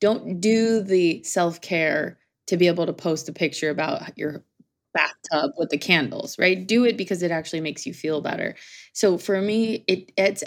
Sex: female